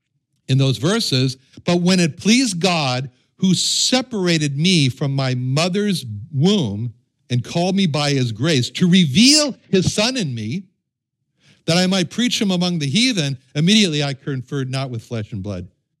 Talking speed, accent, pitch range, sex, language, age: 160 wpm, American, 140-200 Hz, male, English, 60-79